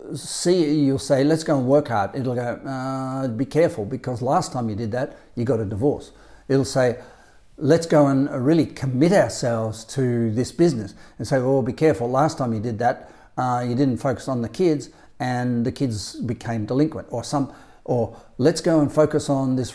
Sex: male